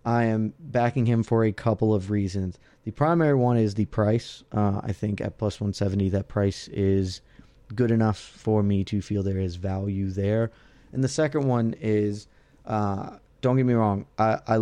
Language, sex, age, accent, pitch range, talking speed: English, male, 30-49, American, 100-120 Hz, 195 wpm